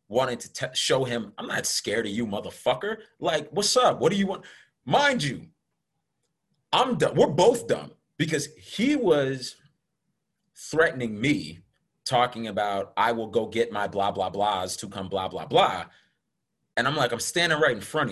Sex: male